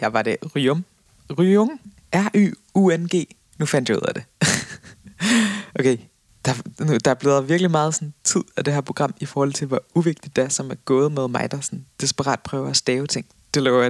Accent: native